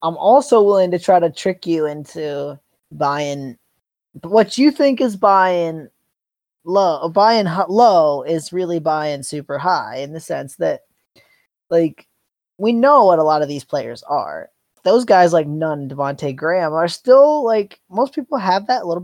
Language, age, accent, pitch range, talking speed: English, 20-39, American, 145-205 Hz, 165 wpm